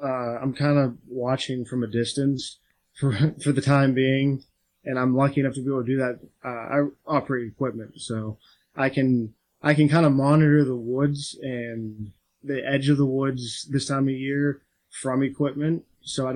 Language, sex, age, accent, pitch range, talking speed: English, male, 20-39, American, 120-145 Hz, 185 wpm